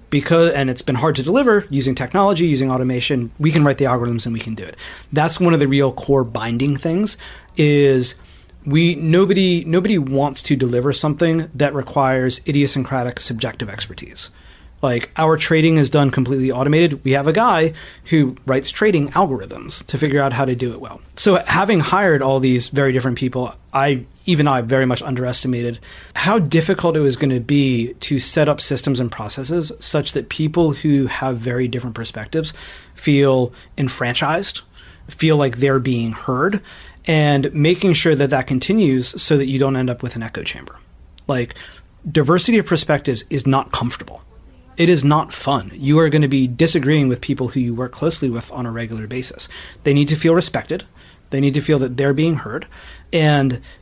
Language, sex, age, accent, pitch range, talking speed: English, male, 30-49, American, 125-160 Hz, 185 wpm